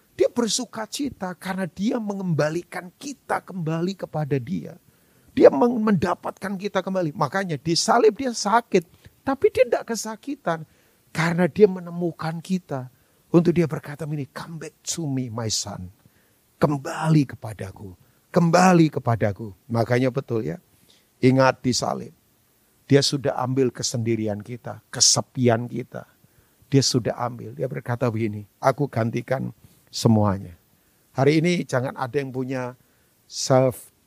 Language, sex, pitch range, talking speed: Indonesian, male, 115-160 Hz, 120 wpm